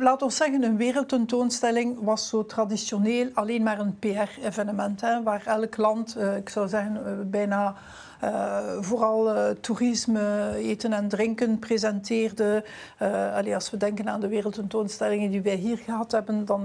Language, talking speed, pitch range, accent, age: Dutch, 135 wpm, 210-235 Hz, Dutch, 60-79